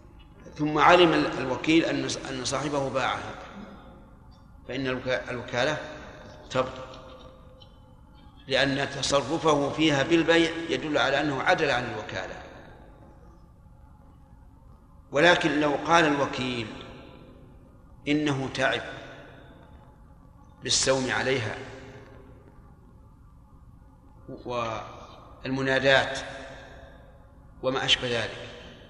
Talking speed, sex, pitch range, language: 65 wpm, male, 130-155 Hz, Arabic